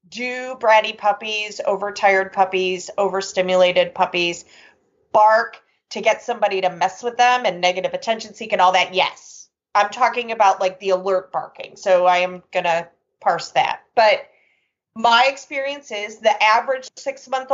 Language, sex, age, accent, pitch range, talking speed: English, female, 30-49, American, 185-255 Hz, 155 wpm